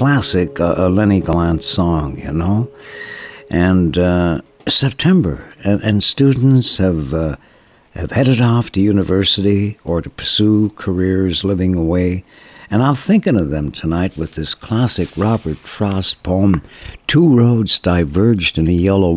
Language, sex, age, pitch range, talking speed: English, male, 60-79, 85-120 Hz, 140 wpm